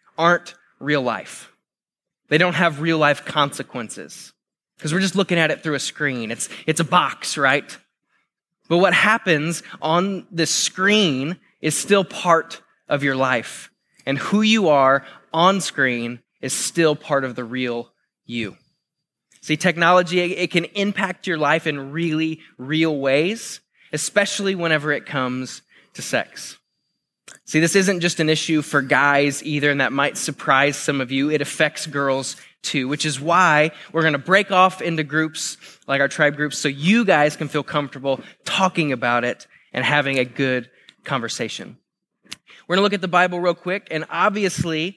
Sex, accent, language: male, American, English